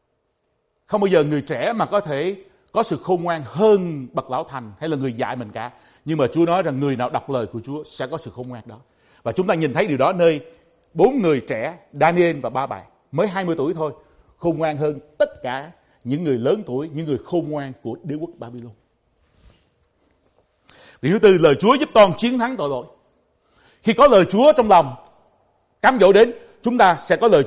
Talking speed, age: 220 wpm, 60-79